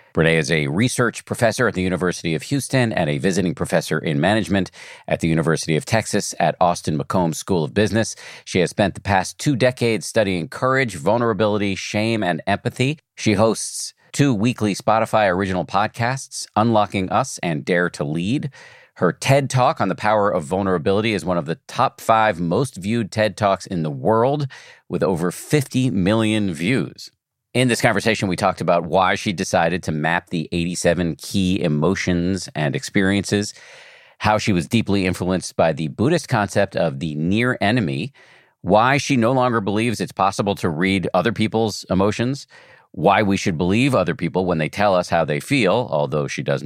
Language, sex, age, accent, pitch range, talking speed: English, male, 50-69, American, 90-115 Hz, 175 wpm